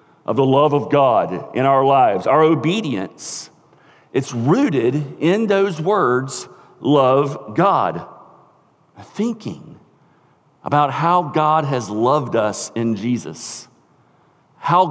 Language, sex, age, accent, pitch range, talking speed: English, male, 50-69, American, 145-215 Hz, 110 wpm